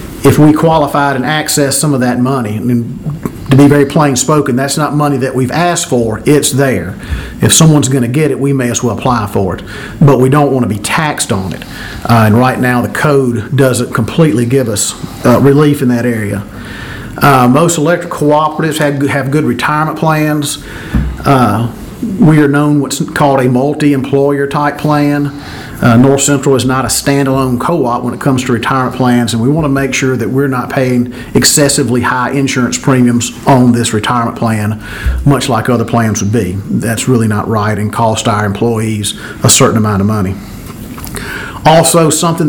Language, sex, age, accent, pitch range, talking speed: English, male, 40-59, American, 120-145 Hz, 190 wpm